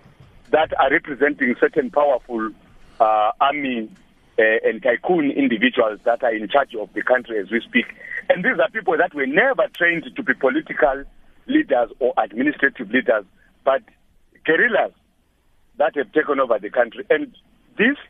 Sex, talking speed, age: male, 155 wpm, 50-69